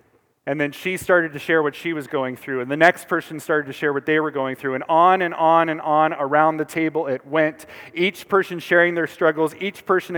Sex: male